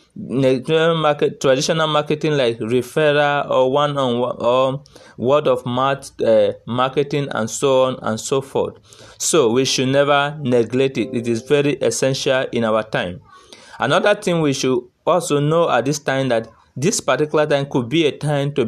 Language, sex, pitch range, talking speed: English, male, 125-145 Hz, 165 wpm